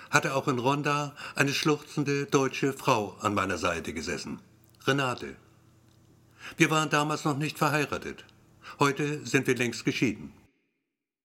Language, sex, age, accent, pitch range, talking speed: German, male, 60-79, German, 110-140 Hz, 130 wpm